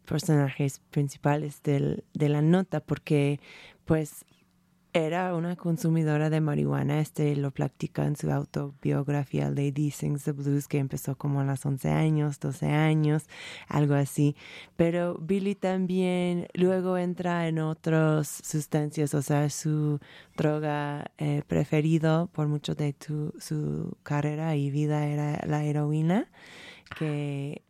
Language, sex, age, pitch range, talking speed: Spanish, female, 20-39, 145-165 Hz, 130 wpm